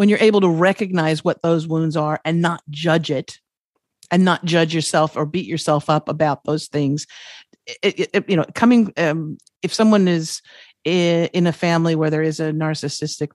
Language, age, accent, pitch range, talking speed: English, 50-69, American, 160-190 Hz, 175 wpm